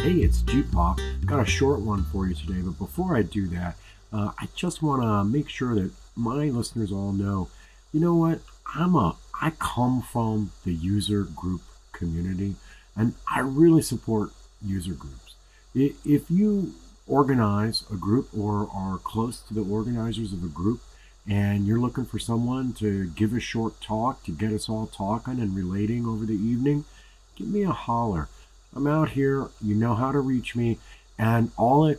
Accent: American